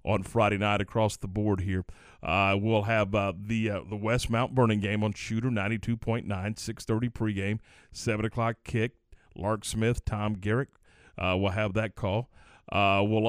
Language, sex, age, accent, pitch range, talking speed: English, male, 40-59, American, 100-120 Hz, 165 wpm